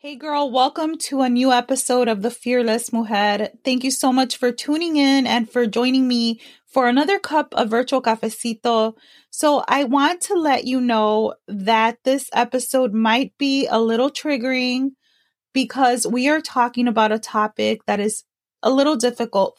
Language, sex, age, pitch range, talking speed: English, female, 20-39, 220-260 Hz, 170 wpm